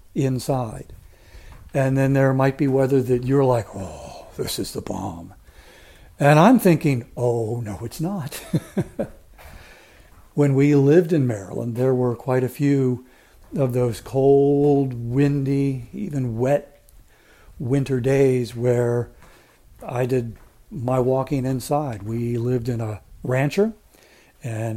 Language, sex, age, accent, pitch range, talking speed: English, male, 60-79, American, 120-145 Hz, 125 wpm